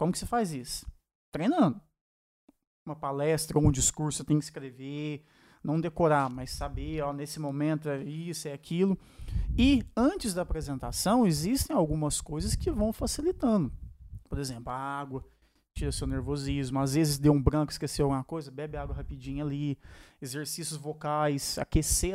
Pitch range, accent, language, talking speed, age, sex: 140-165 Hz, Brazilian, Portuguese, 155 wpm, 20-39, male